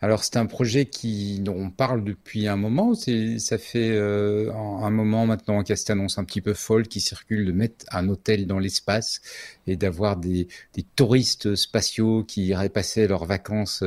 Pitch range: 100-130 Hz